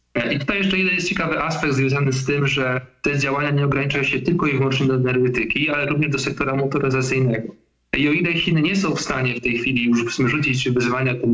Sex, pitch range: male, 125-150 Hz